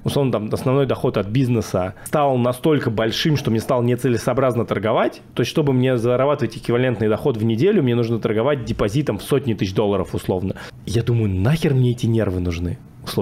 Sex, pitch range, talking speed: male, 115-150 Hz, 180 wpm